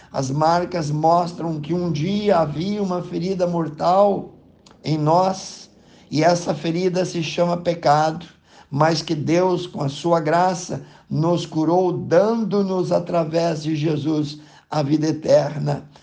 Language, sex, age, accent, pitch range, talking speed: Portuguese, male, 50-69, Brazilian, 150-175 Hz, 125 wpm